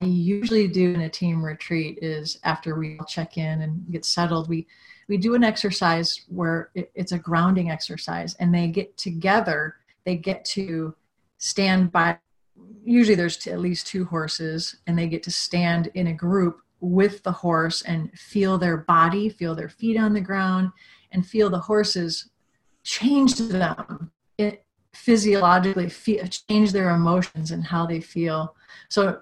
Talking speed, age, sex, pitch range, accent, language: 155 wpm, 30-49, female, 170-210 Hz, American, English